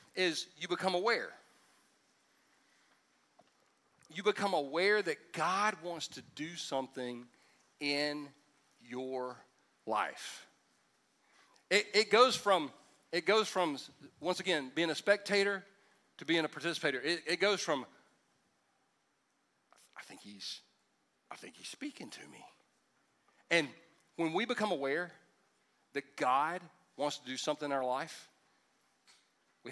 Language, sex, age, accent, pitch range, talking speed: English, male, 40-59, American, 135-180 Hz, 120 wpm